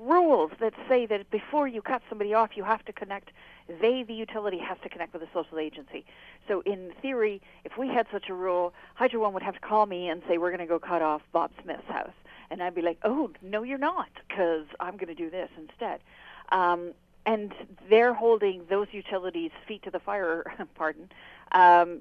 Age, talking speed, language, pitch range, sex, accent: 50-69, 210 wpm, English, 175-235 Hz, female, American